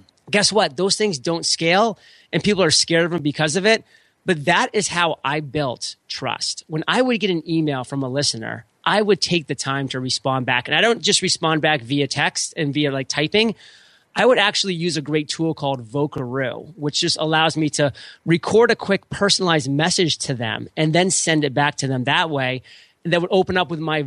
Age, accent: 30-49, American